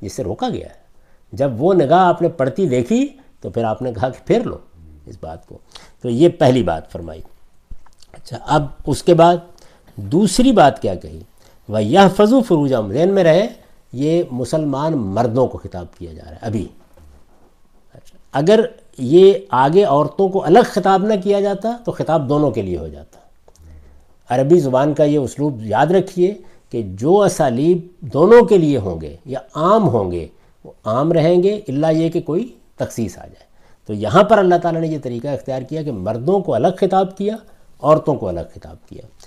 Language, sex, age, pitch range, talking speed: Urdu, male, 50-69, 110-180 Hz, 185 wpm